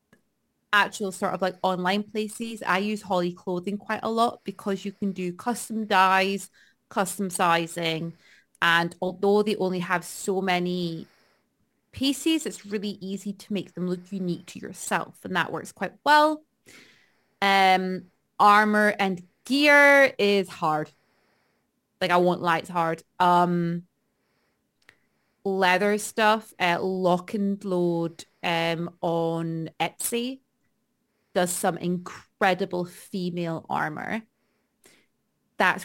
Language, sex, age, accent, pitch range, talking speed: English, female, 20-39, British, 180-210 Hz, 120 wpm